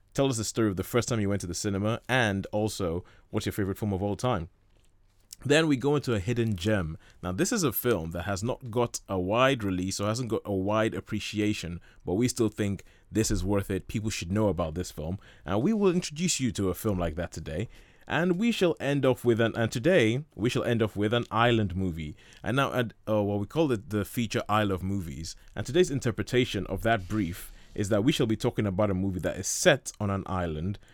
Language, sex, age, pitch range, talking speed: English, male, 20-39, 95-120 Hz, 240 wpm